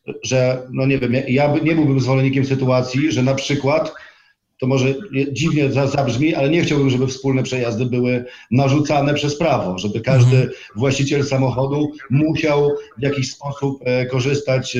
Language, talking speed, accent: Polish, 145 wpm, native